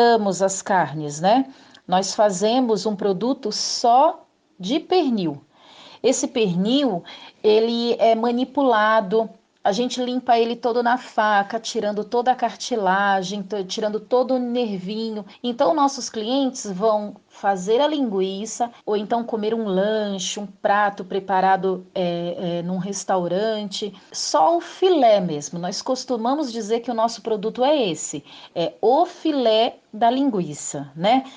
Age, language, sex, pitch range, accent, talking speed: 40-59, Portuguese, female, 195-250 Hz, Brazilian, 125 wpm